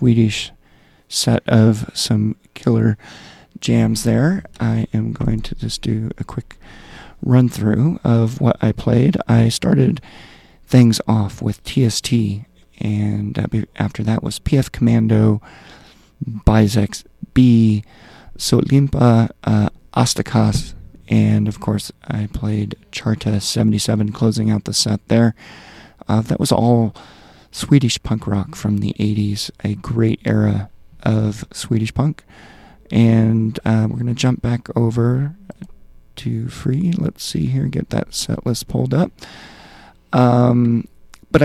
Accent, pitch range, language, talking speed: American, 105-120 Hz, English, 125 wpm